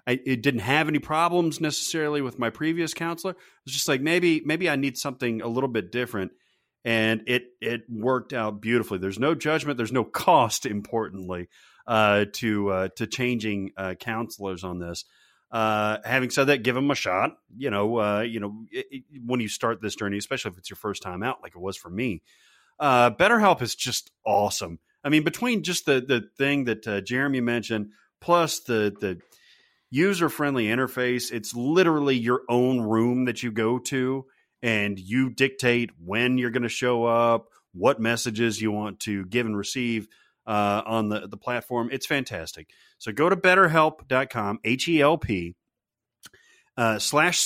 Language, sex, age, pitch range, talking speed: English, male, 30-49, 105-140 Hz, 175 wpm